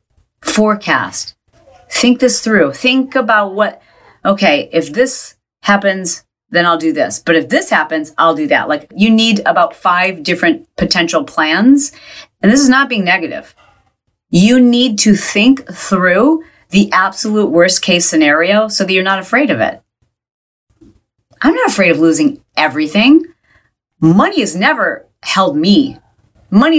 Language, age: English, 40-59